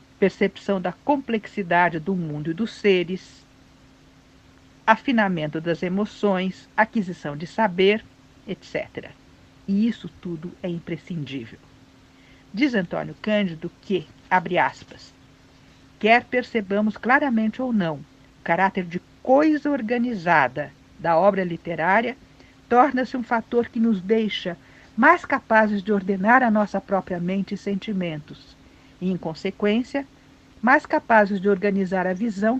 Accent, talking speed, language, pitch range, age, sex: Brazilian, 120 wpm, Portuguese, 170-225 Hz, 60-79, female